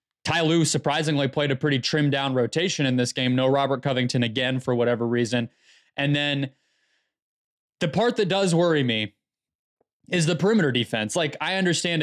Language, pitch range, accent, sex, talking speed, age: English, 135-165 Hz, American, male, 165 wpm, 20-39